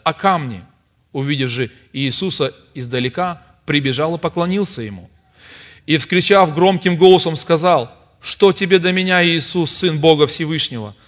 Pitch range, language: 135-190 Hz, English